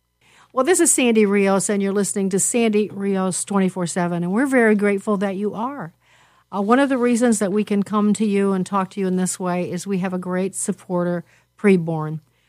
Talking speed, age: 210 wpm, 50-69